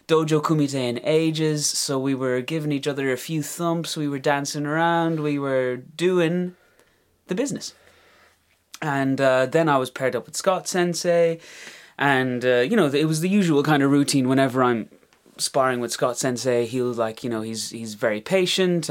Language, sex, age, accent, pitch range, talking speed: English, male, 20-39, British, 130-190 Hz, 180 wpm